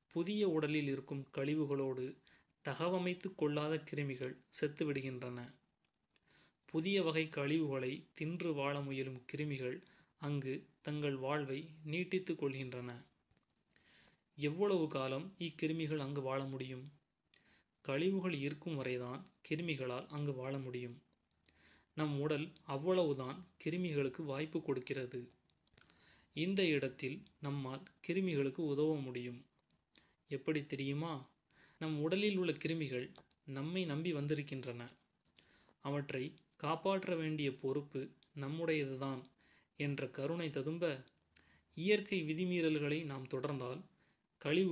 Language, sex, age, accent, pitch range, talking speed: Tamil, male, 30-49, native, 135-160 Hz, 75 wpm